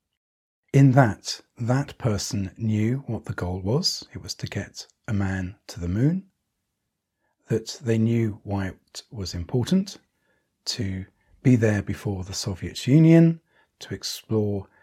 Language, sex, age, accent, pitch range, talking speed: English, male, 40-59, British, 100-135 Hz, 140 wpm